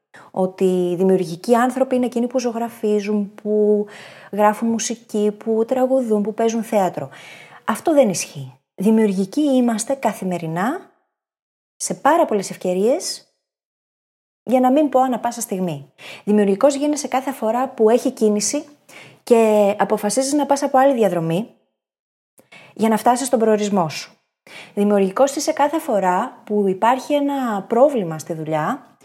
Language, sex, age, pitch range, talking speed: Greek, female, 20-39, 195-270 Hz, 130 wpm